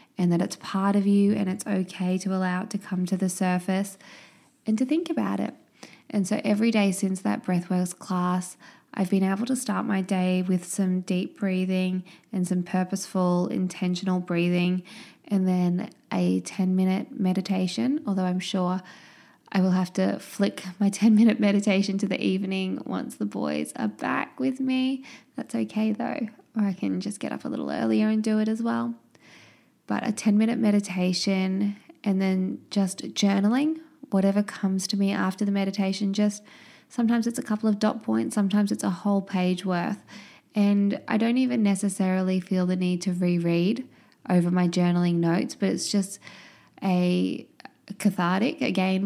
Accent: Australian